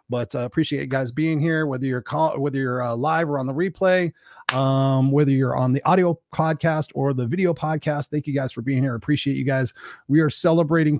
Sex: male